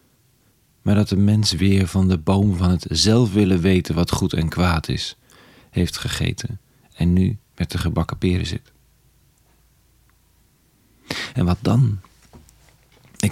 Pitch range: 90-115 Hz